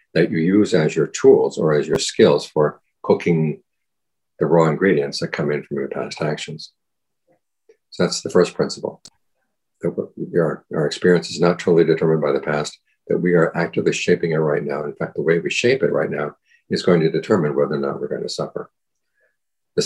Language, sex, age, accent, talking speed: English, male, 50-69, American, 195 wpm